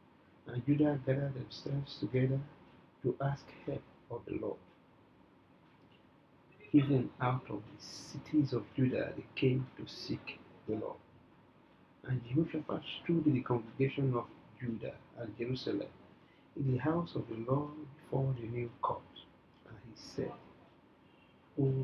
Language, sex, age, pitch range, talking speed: English, male, 60-79, 125-150 Hz, 130 wpm